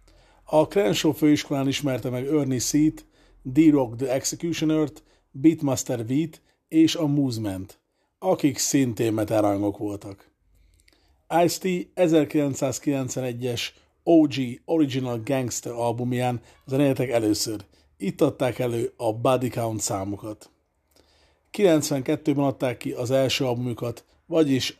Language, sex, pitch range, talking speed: Hungarian, male, 110-150 Hz, 100 wpm